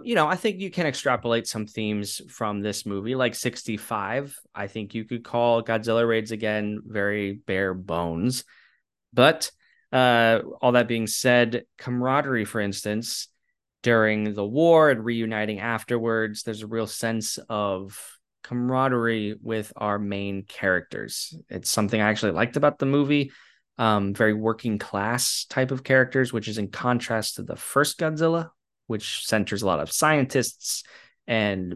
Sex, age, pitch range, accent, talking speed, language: male, 20-39, 105-125 Hz, American, 150 wpm, English